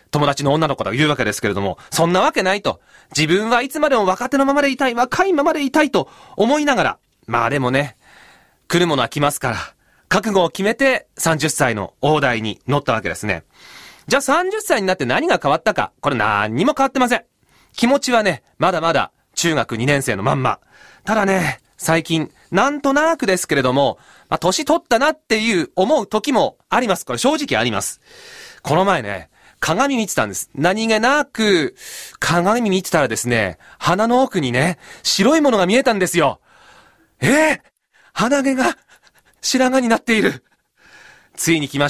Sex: male